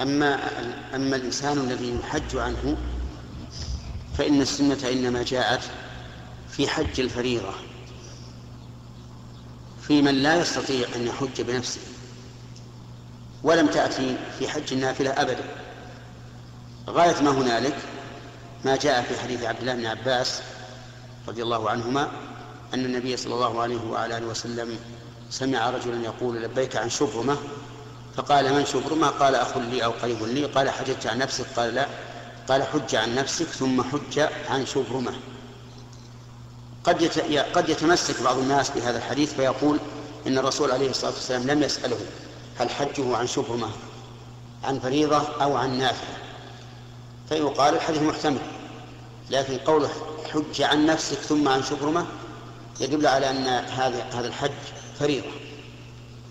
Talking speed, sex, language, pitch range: 125 wpm, male, Arabic, 120-140 Hz